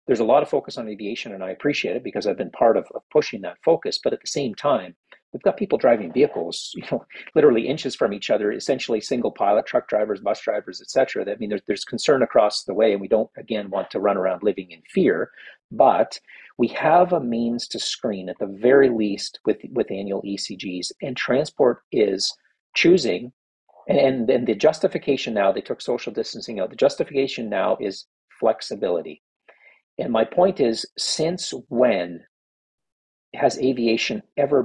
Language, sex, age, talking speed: English, male, 50-69, 185 wpm